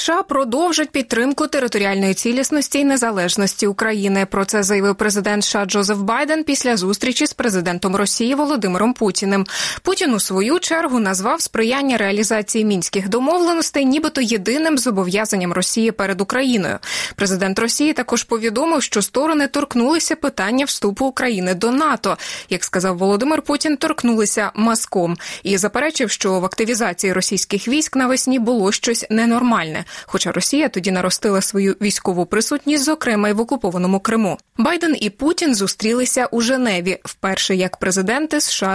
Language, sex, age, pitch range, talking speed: Russian, female, 20-39, 195-270 Hz, 135 wpm